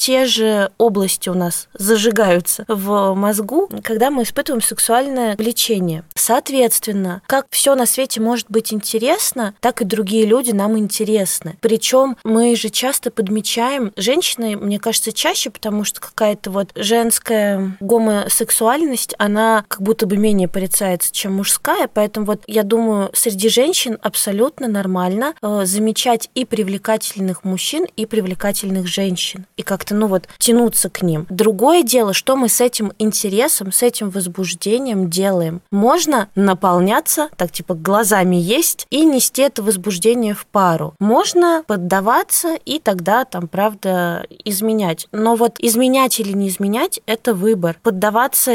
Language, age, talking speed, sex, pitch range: Russian, 20-39, 140 wpm, female, 200-235 Hz